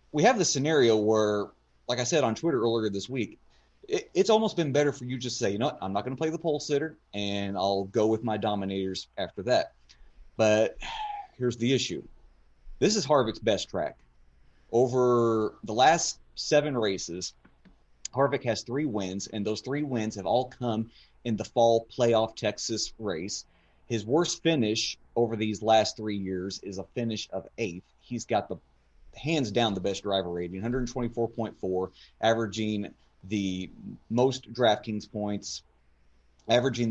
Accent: American